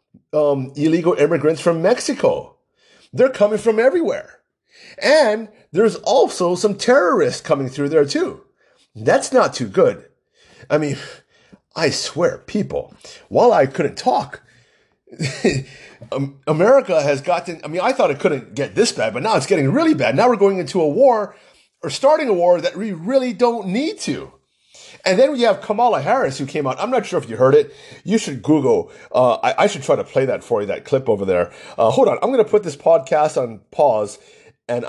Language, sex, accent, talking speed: English, male, American, 190 wpm